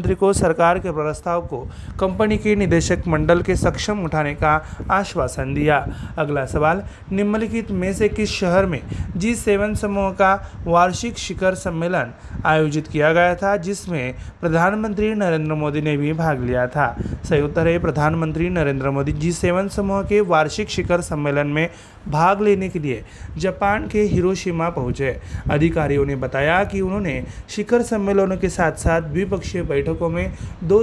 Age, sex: 30-49, male